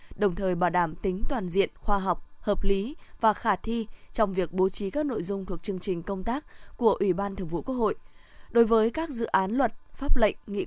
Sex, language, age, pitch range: female, Vietnamese, 20-39, 190-230 Hz